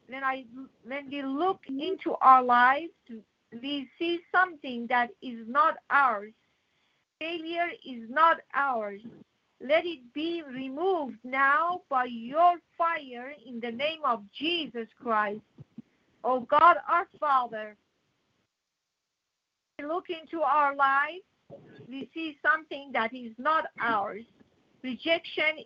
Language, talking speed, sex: English, 115 wpm, female